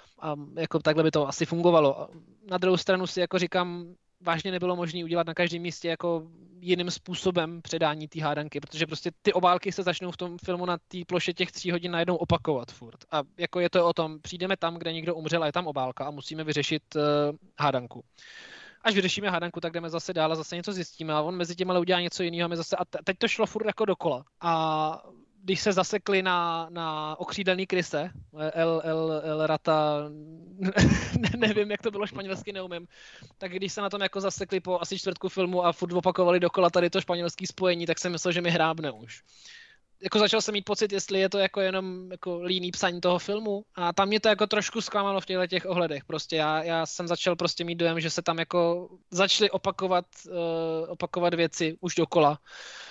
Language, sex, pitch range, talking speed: Czech, male, 165-190 Hz, 205 wpm